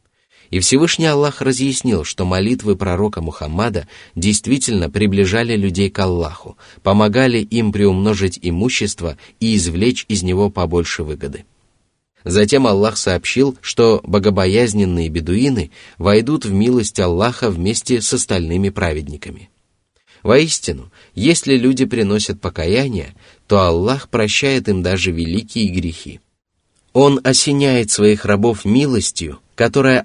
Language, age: Russian, 30-49